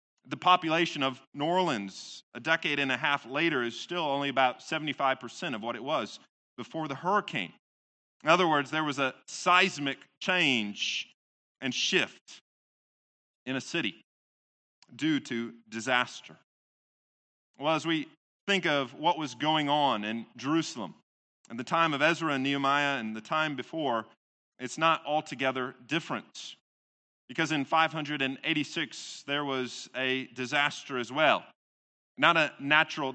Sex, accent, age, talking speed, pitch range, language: male, American, 30-49, 140 wpm, 120-160 Hz, English